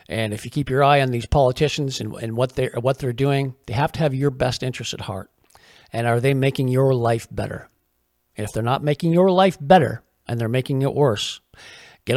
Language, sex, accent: English, male, American